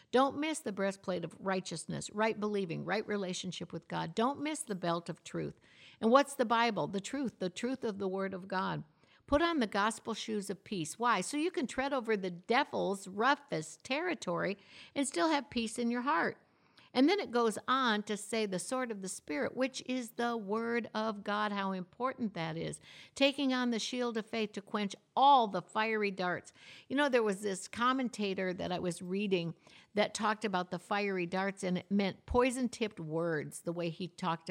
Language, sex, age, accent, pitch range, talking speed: English, female, 60-79, American, 180-240 Hz, 200 wpm